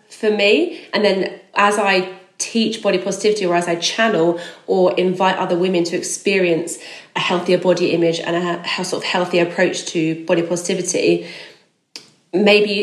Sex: female